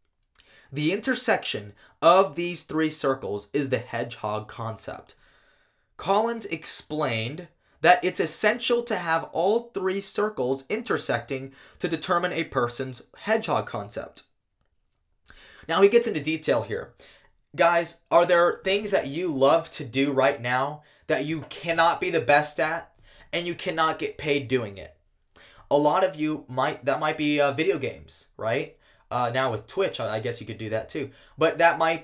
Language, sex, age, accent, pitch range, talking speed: English, male, 20-39, American, 130-170 Hz, 155 wpm